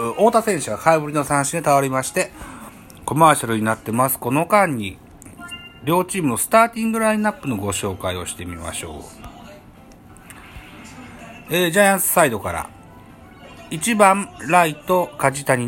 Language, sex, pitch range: Japanese, male, 115-170 Hz